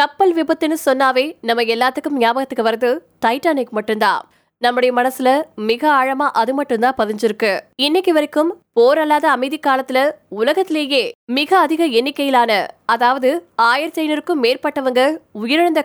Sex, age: female, 20-39